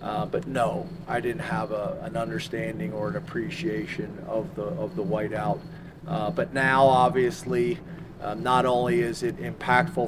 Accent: American